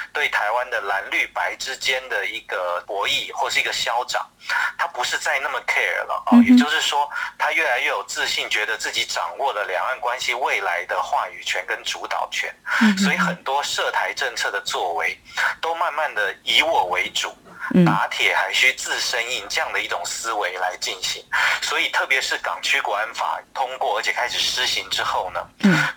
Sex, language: male, Chinese